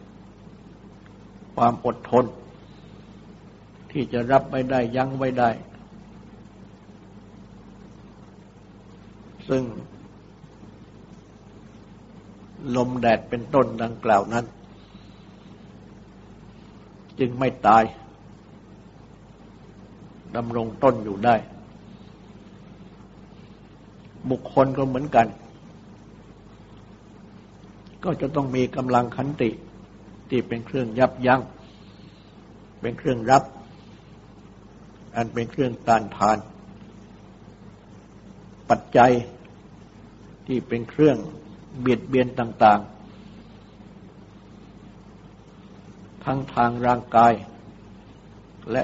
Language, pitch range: Thai, 105-125 Hz